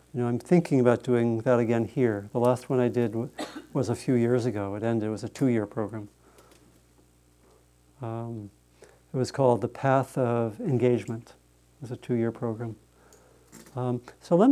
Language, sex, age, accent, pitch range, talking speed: English, male, 50-69, American, 115-145 Hz, 175 wpm